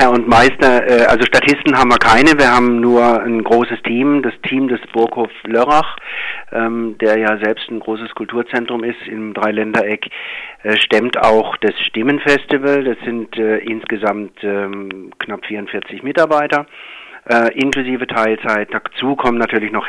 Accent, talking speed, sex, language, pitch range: German, 135 wpm, male, German, 105-125 Hz